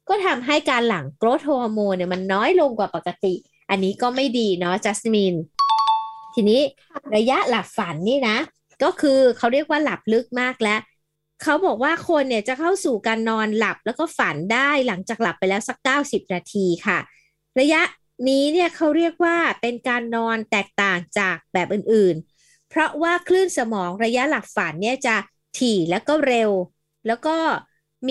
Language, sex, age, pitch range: Thai, female, 20-39, 200-280 Hz